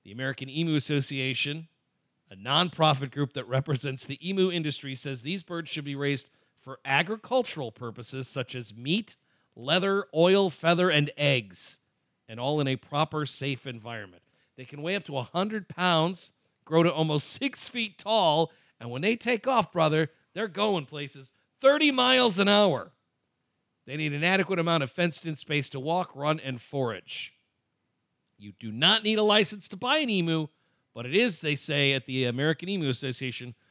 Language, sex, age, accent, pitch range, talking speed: English, male, 40-59, American, 130-185 Hz, 170 wpm